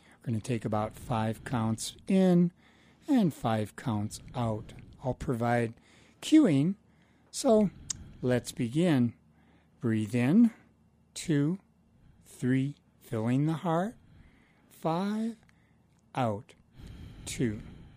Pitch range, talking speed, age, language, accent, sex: 110-160 Hz, 95 wpm, 60-79, English, American, male